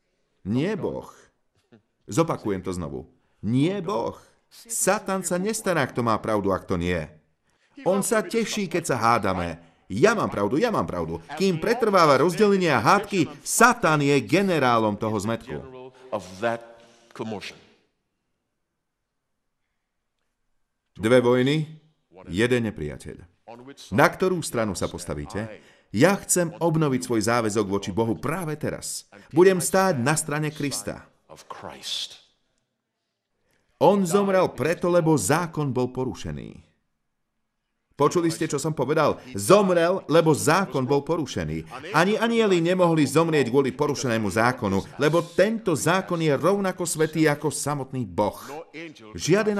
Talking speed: 115 wpm